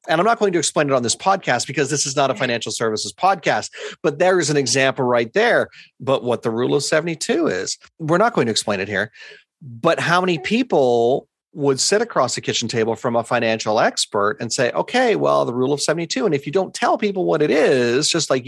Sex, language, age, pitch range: male, English, 40-59, 120-165 Hz